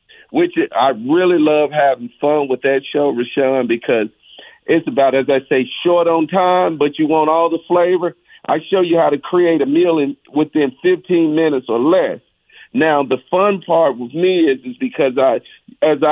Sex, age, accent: male, 50-69, American